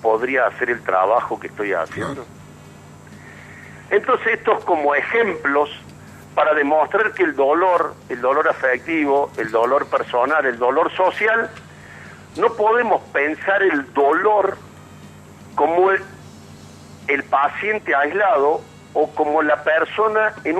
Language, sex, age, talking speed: Spanish, male, 50-69, 120 wpm